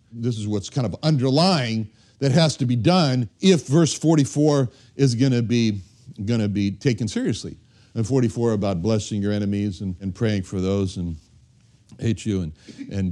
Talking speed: 180 wpm